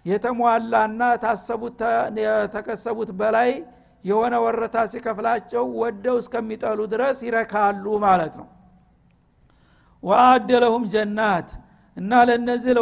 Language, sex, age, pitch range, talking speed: Amharic, male, 60-79, 210-240 Hz, 95 wpm